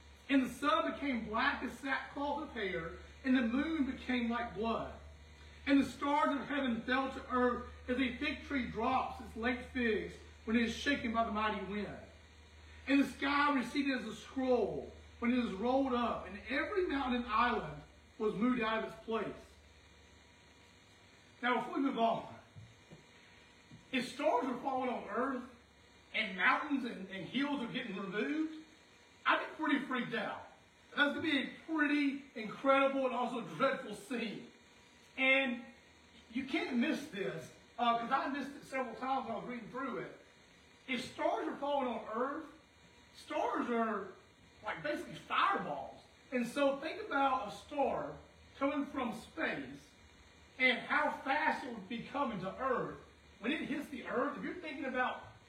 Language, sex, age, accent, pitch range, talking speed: English, male, 40-59, American, 225-280 Hz, 165 wpm